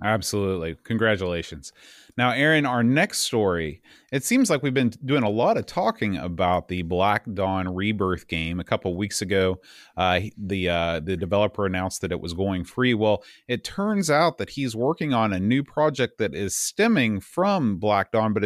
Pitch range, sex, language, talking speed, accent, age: 95-125 Hz, male, English, 185 wpm, American, 30-49